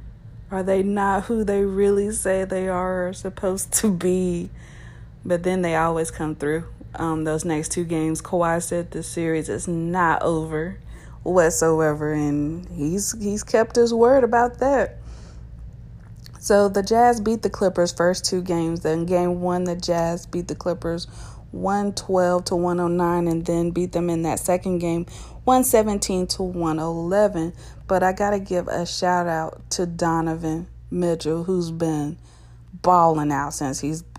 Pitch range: 160-185 Hz